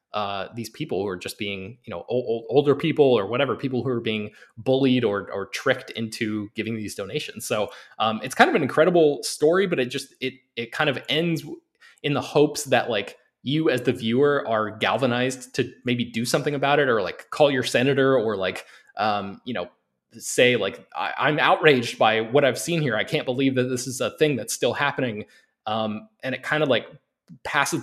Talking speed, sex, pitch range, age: 210 wpm, male, 110-140 Hz, 20-39